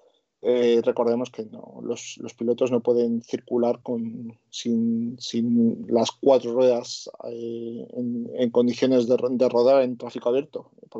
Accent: Spanish